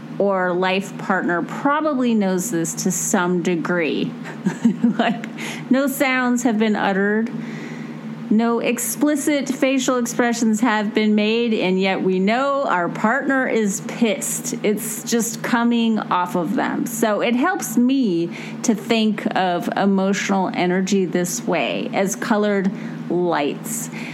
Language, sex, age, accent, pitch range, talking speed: English, female, 30-49, American, 190-240 Hz, 125 wpm